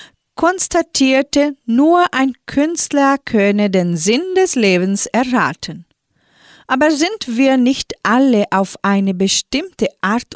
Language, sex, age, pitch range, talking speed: German, female, 40-59, 195-280 Hz, 110 wpm